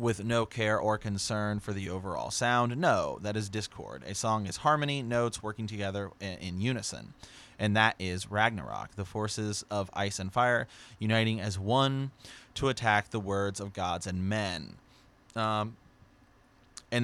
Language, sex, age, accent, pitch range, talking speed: English, male, 30-49, American, 100-120 Hz, 160 wpm